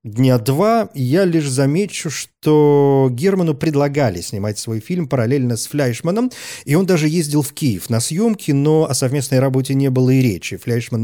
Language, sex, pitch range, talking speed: Russian, male, 120-155 Hz, 170 wpm